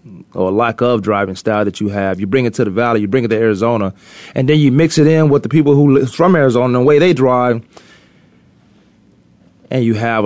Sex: male